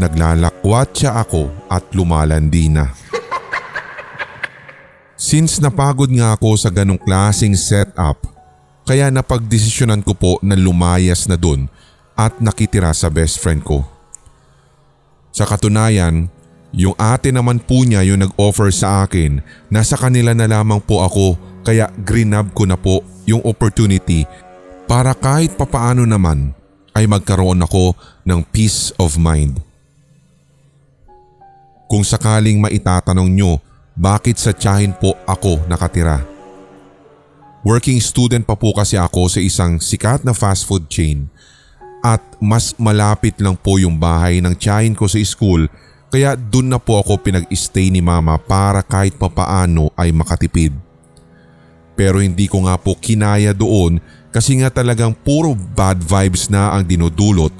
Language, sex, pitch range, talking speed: Filipino, male, 90-110 Hz, 130 wpm